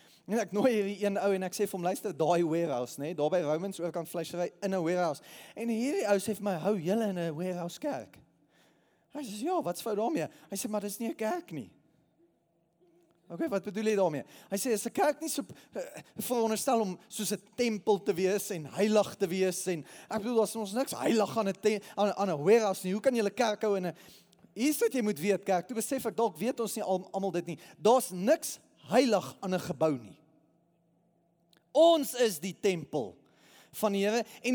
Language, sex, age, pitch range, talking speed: English, male, 20-39, 185-235 Hz, 215 wpm